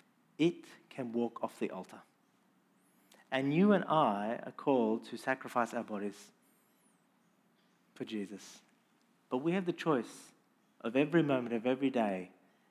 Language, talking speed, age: English, 135 wpm, 40-59